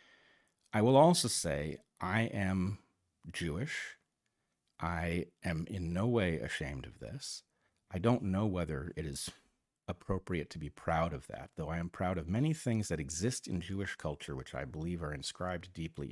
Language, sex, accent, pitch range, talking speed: English, male, American, 85-115 Hz, 170 wpm